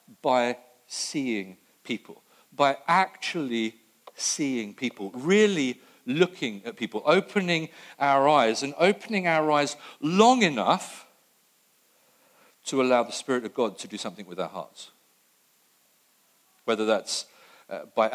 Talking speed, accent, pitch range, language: 115 wpm, British, 105-140 Hz, English